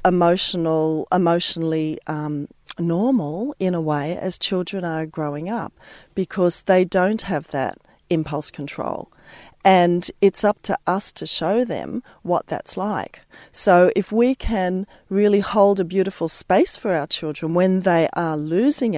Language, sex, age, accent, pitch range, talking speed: English, female, 40-59, Australian, 170-225 Hz, 145 wpm